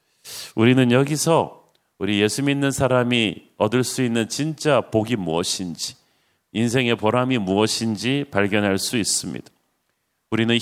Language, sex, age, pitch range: Korean, male, 40-59, 110-135 Hz